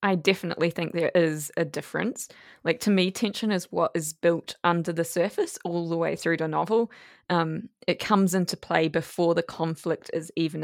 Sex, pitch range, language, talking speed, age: female, 165-190 Hz, English, 190 wpm, 20-39